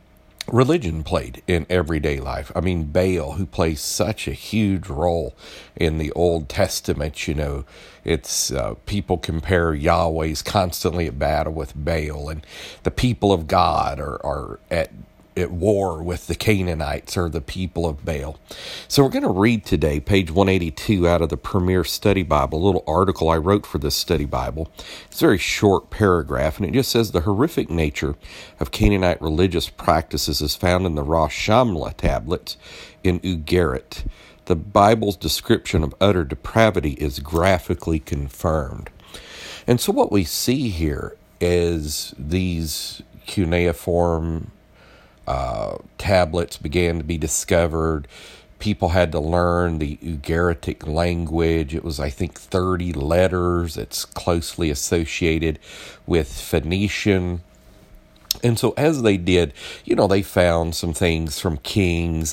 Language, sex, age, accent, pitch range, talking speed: English, male, 50-69, American, 80-95 Hz, 145 wpm